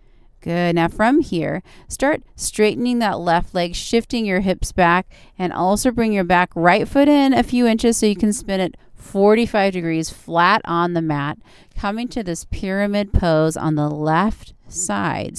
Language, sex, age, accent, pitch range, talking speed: English, female, 30-49, American, 165-200 Hz, 170 wpm